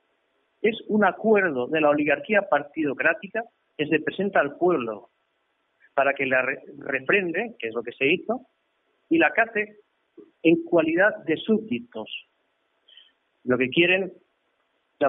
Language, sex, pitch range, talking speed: Spanish, male, 135-200 Hz, 130 wpm